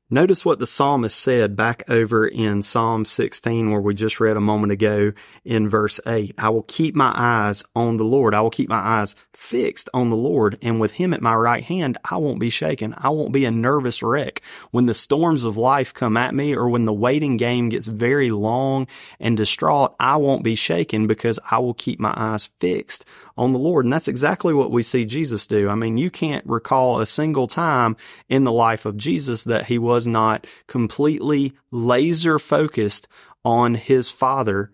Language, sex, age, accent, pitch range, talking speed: English, male, 30-49, American, 110-135 Hz, 200 wpm